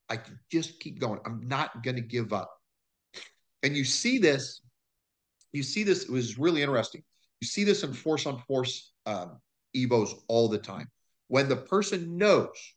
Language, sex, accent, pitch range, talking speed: English, male, American, 120-175 Hz, 180 wpm